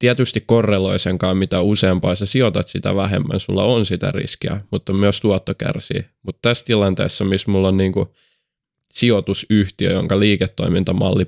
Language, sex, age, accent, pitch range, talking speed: Finnish, male, 20-39, native, 95-105 Hz, 150 wpm